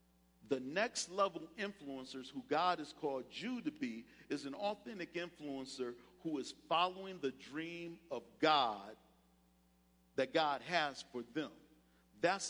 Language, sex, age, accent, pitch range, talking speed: English, male, 50-69, American, 135-190 Hz, 135 wpm